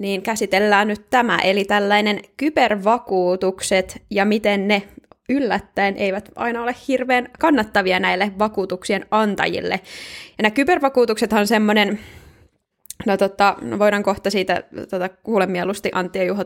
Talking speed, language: 115 wpm, Finnish